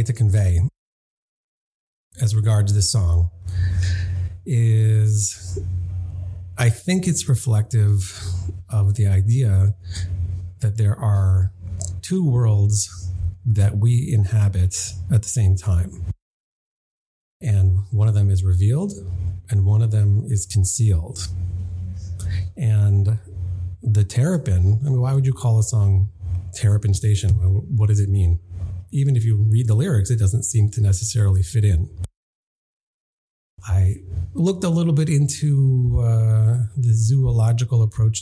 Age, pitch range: 40-59, 90-115 Hz